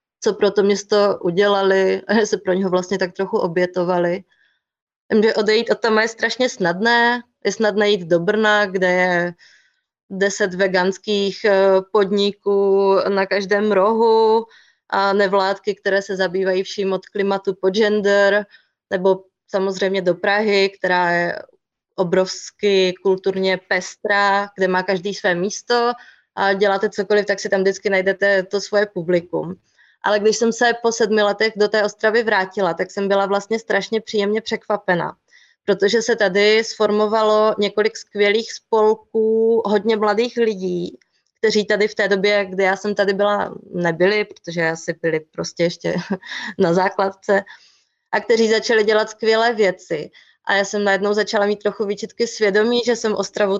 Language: Czech